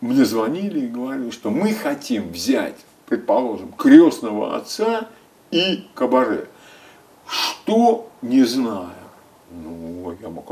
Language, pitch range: Russian, 220-315 Hz